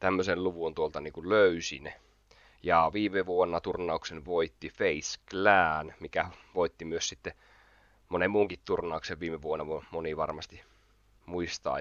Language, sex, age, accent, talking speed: Finnish, male, 20-39, native, 120 wpm